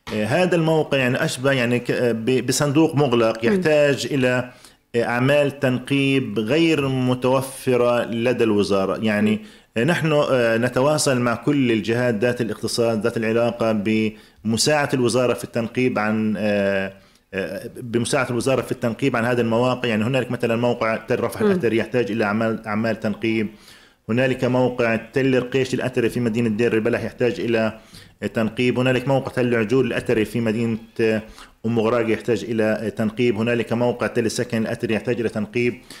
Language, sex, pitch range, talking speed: Arabic, male, 110-130 Hz, 135 wpm